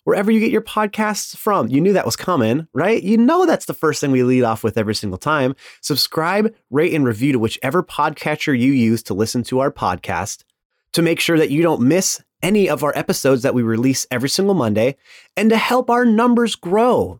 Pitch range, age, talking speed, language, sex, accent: 125-170 Hz, 30-49, 215 wpm, English, male, American